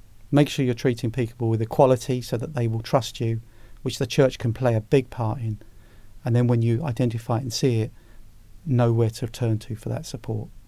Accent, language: British, English